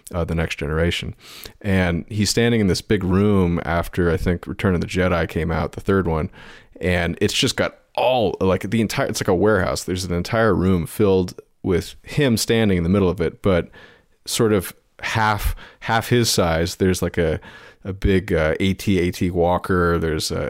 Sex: male